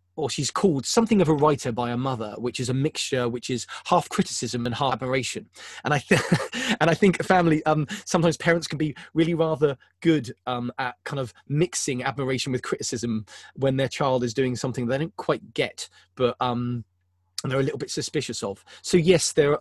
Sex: male